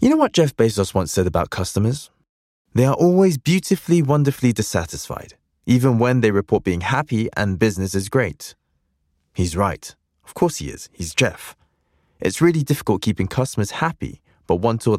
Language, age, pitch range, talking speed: English, 20-39, 85-120 Hz, 170 wpm